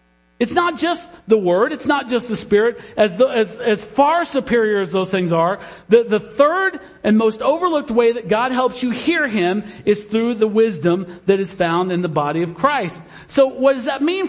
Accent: American